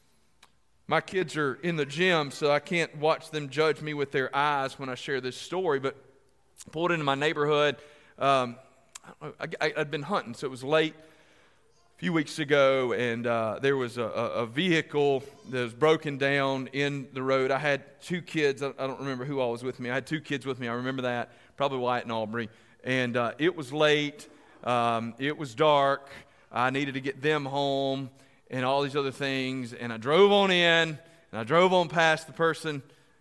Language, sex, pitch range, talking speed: English, male, 125-155 Hz, 200 wpm